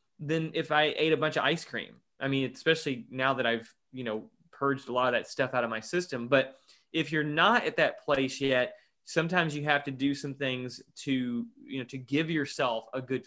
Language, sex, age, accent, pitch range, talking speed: English, male, 20-39, American, 130-160 Hz, 225 wpm